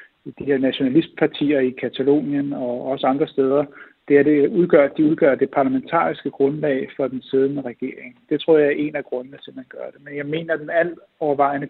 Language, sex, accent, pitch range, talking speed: Danish, male, native, 135-150 Hz, 215 wpm